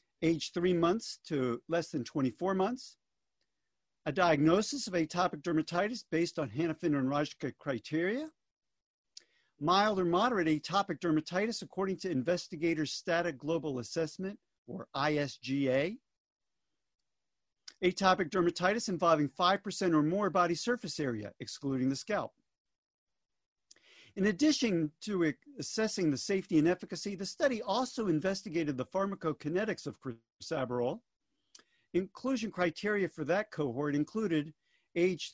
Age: 50-69